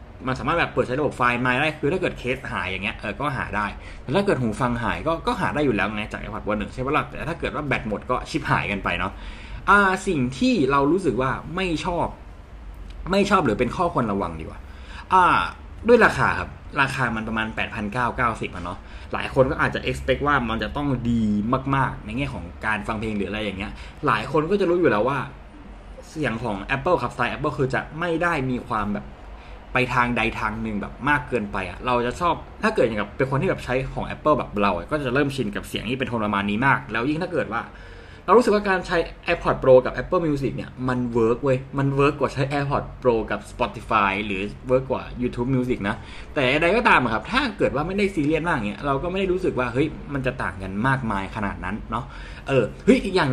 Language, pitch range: Thai, 105-145 Hz